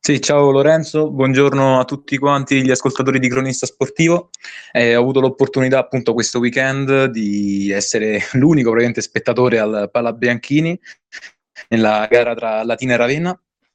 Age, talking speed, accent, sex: 20-39, 140 wpm, native, male